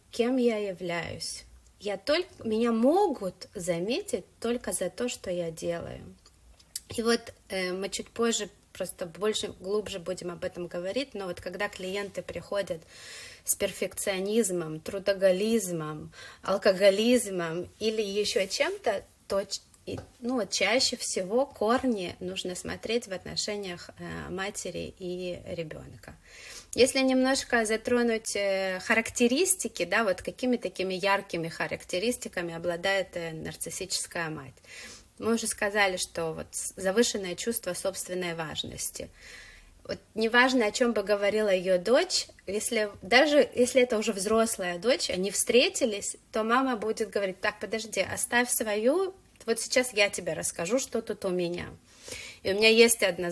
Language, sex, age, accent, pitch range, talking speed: Russian, female, 30-49, native, 185-235 Hz, 120 wpm